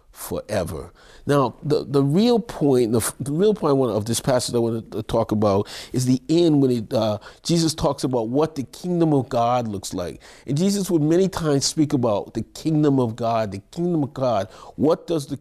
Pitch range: 125-165 Hz